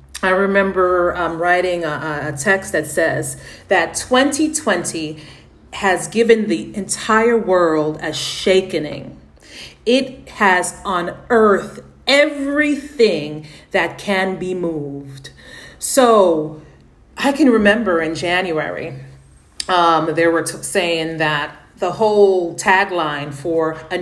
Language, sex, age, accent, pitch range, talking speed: English, female, 40-59, American, 150-200 Hz, 105 wpm